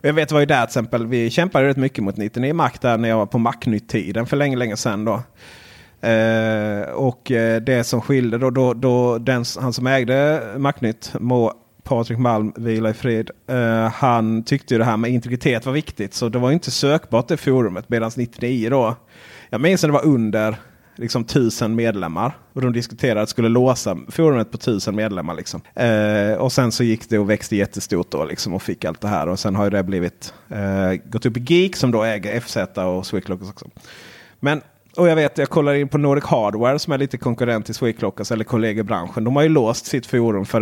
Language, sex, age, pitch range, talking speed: Swedish, male, 30-49, 110-135 Hz, 210 wpm